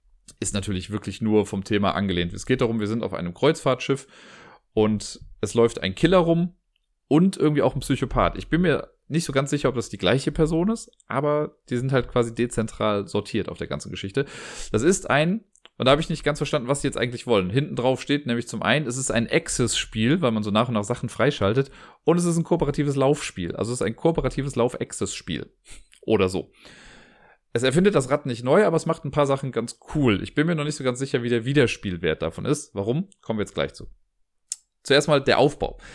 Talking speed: 225 wpm